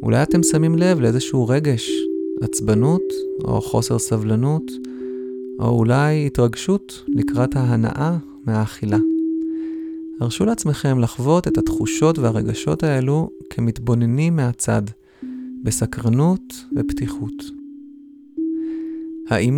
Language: Hebrew